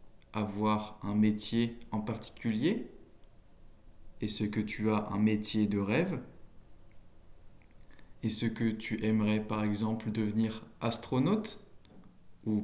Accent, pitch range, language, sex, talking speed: French, 105-125 Hz, French, male, 115 wpm